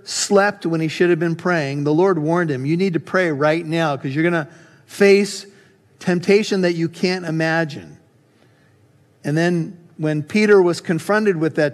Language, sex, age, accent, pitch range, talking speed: English, male, 50-69, American, 140-170 Hz, 175 wpm